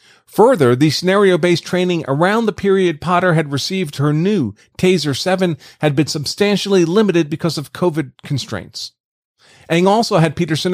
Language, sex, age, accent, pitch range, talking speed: English, male, 40-59, American, 145-190 Hz, 145 wpm